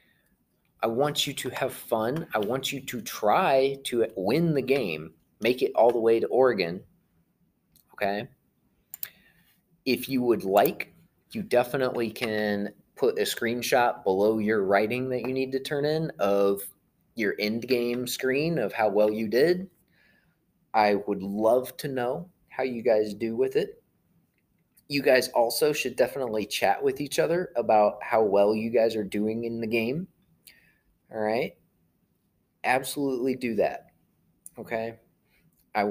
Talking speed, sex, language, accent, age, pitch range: 150 wpm, male, English, American, 20-39, 110-145 Hz